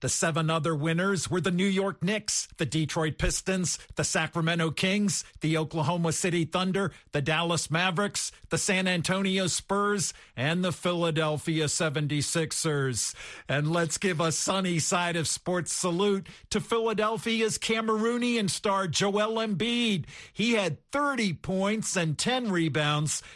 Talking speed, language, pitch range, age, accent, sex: 135 wpm, English, 155-195 Hz, 50-69, American, male